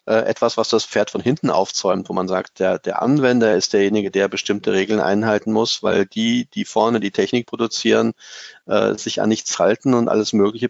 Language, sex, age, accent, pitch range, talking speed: German, male, 40-59, German, 100-120 Hz, 195 wpm